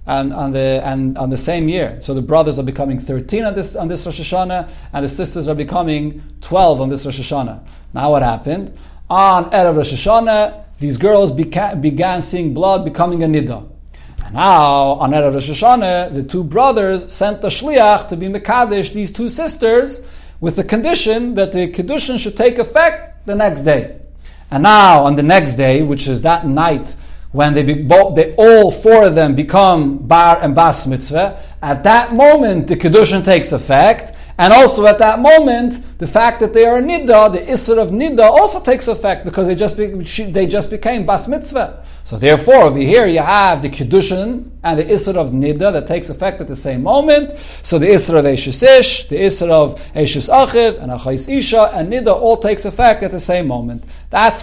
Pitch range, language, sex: 145-215 Hz, English, male